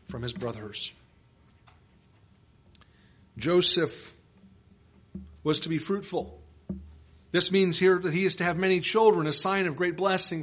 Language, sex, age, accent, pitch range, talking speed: English, male, 50-69, American, 120-180 Hz, 130 wpm